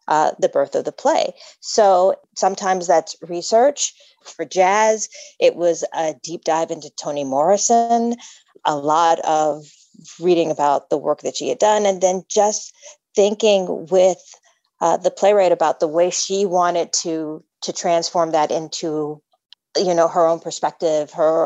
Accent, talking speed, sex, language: American, 155 wpm, female, English